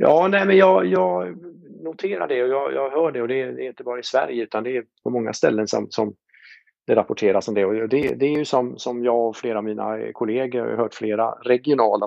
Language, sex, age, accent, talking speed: Swedish, male, 50-69, Norwegian, 240 wpm